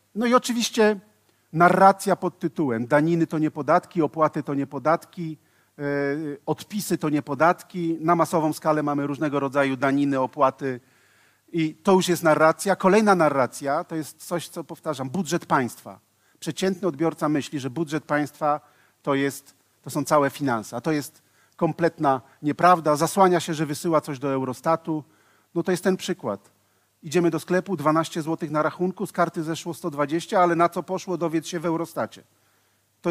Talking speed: 160 wpm